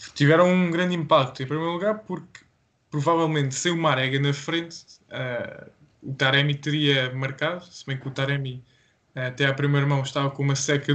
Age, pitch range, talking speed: 20-39, 135-160 Hz, 180 wpm